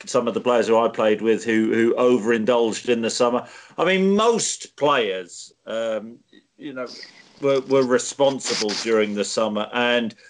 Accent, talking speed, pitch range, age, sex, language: British, 165 wpm, 115-130 Hz, 40-59, male, English